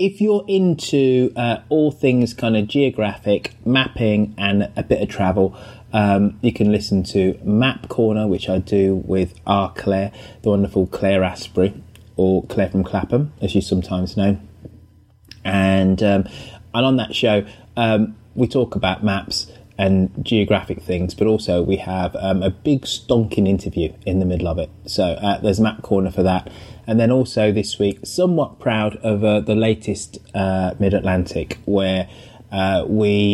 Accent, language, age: British, English, 20-39